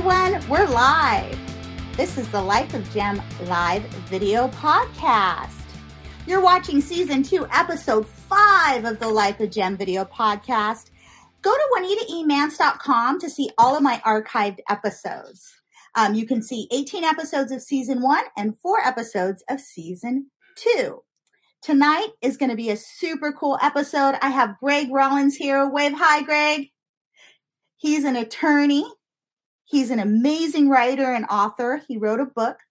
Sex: female